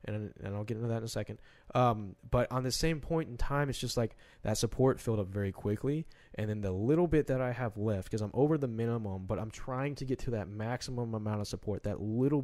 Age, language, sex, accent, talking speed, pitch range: 20-39, English, male, American, 255 wpm, 105-130 Hz